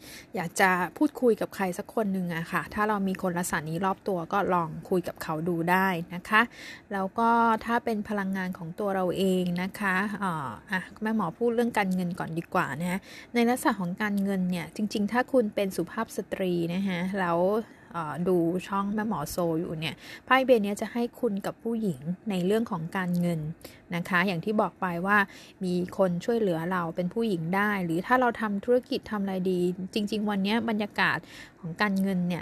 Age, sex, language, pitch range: 20-39, female, Thai, 180-220 Hz